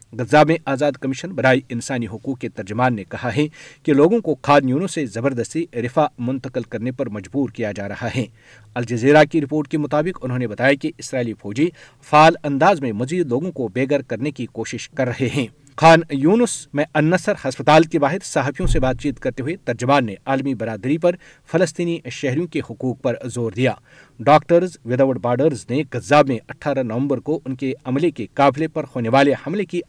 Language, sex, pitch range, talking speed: Urdu, male, 120-150 Hz, 195 wpm